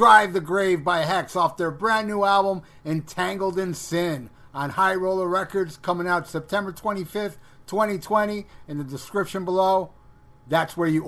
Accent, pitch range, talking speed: American, 150-205 Hz, 155 wpm